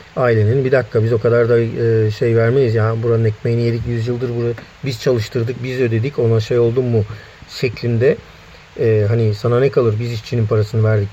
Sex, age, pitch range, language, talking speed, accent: male, 40-59, 110-130 Hz, Turkish, 180 wpm, native